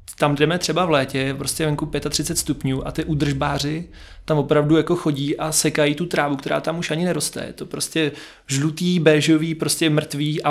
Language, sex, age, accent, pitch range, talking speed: Czech, male, 20-39, native, 140-160 Hz, 190 wpm